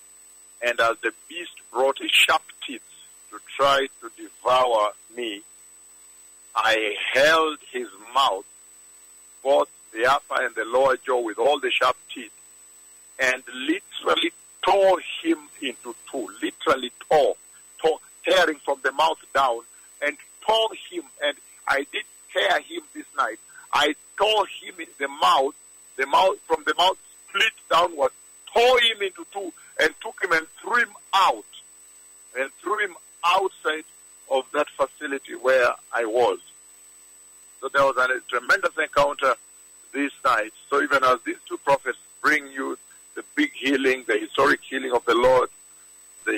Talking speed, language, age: 145 wpm, English, 50-69